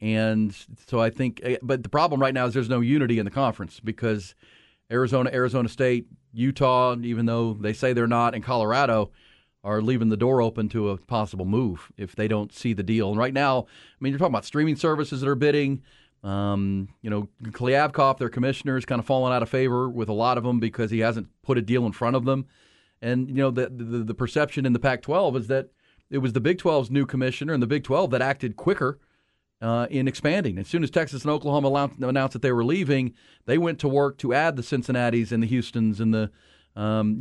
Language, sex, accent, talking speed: English, male, American, 225 wpm